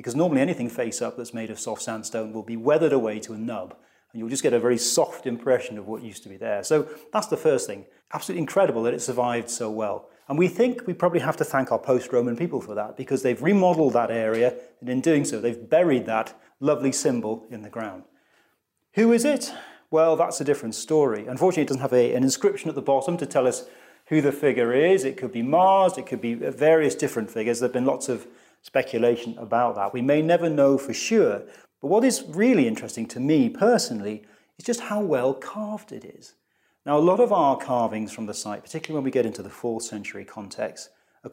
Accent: British